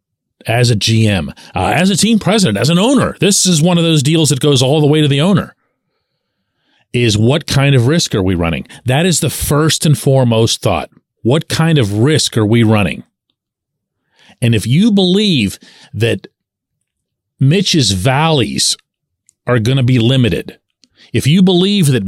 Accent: American